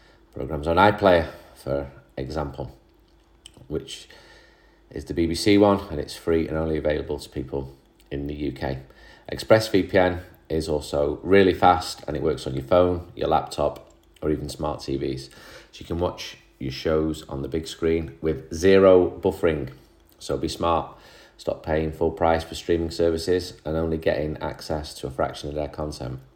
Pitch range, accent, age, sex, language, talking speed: 75-90 Hz, British, 30-49, male, English, 160 wpm